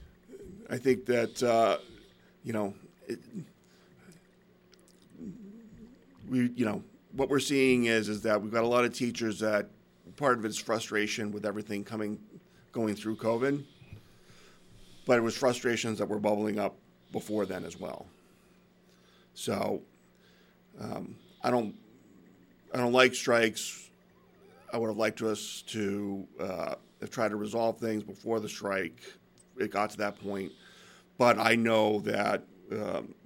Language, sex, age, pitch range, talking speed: English, male, 40-59, 105-115 Hz, 140 wpm